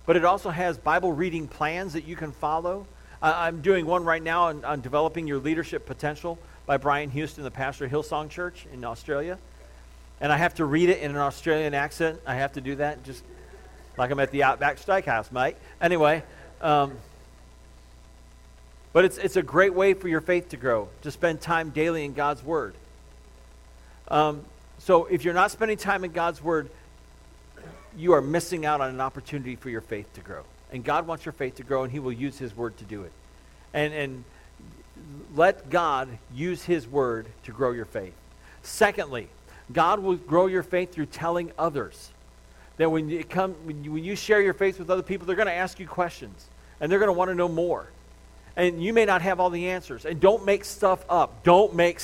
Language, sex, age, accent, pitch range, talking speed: English, male, 40-59, American, 120-175 Hz, 205 wpm